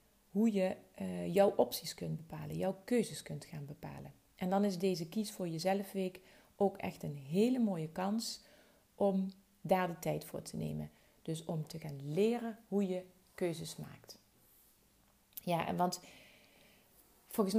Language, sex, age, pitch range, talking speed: Dutch, female, 40-59, 170-225 Hz, 155 wpm